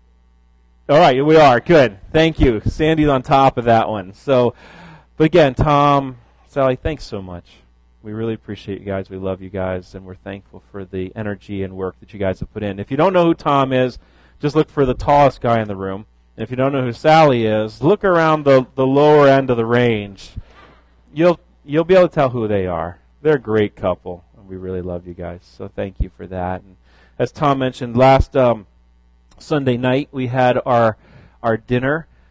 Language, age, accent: English, 30-49, American